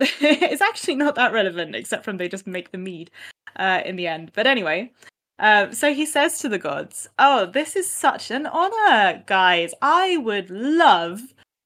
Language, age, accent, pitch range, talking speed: English, 20-39, British, 195-285 Hz, 180 wpm